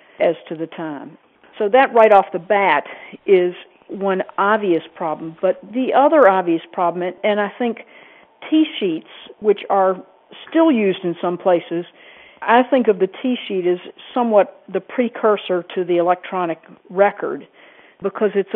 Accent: American